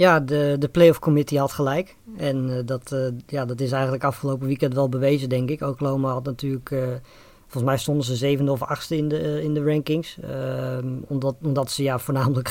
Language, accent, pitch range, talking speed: Dutch, Dutch, 130-145 Hz, 195 wpm